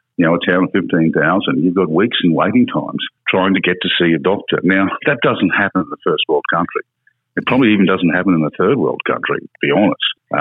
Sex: male